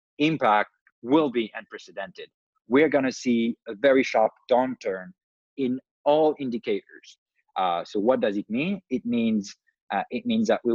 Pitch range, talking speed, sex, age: 105-135 Hz, 155 wpm, male, 30-49